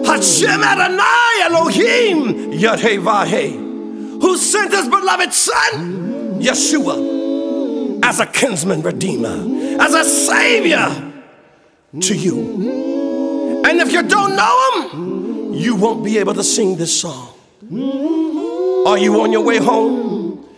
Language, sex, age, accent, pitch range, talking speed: English, male, 50-69, American, 225-345 Hz, 115 wpm